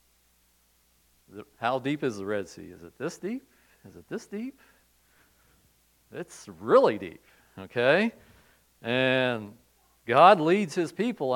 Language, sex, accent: English, male, American